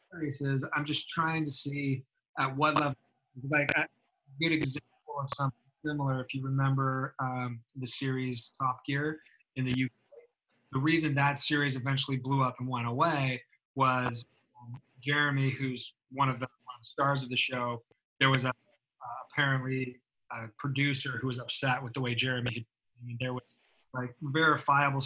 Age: 20-39